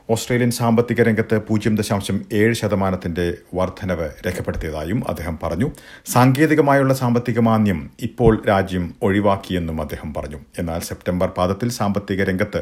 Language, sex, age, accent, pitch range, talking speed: Malayalam, male, 50-69, native, 100-125 Hz, 100 wpm